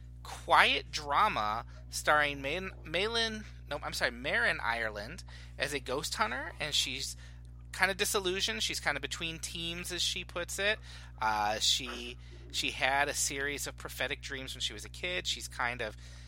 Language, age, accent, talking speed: English, 30-49, American, 165 wpm